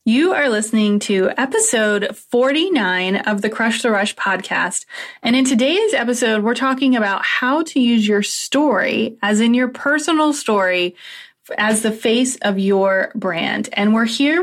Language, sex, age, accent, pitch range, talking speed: English, female, 20-39, American, 200-255 Hz, 160 wpm